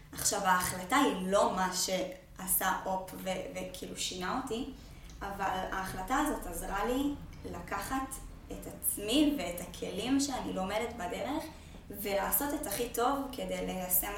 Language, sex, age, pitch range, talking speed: Hebrew, female, 20-39, 185-230 Hz, 125 wpm